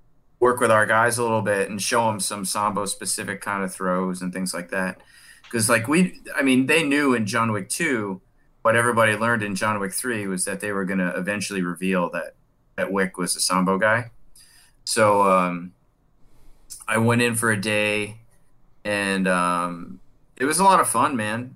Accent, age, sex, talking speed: American, 30-49, male, 195 wpm